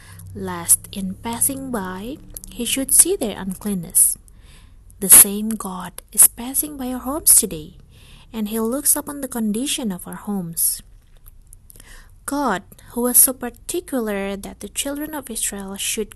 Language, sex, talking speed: English, female, 140 wpm